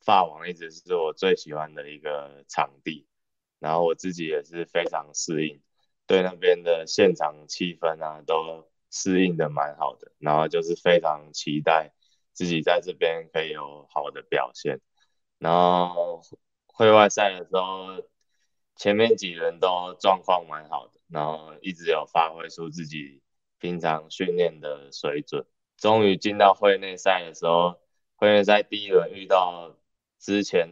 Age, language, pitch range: 20-39, Chinese, 80-120 Hz